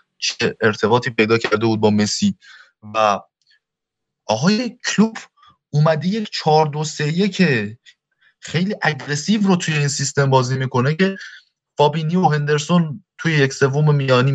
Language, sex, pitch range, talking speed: Persian, male, 125-170 Hz, 120 wpm